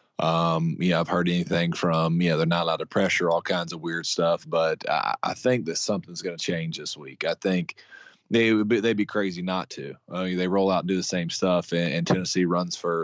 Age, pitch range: 20-39, 80-90 Hz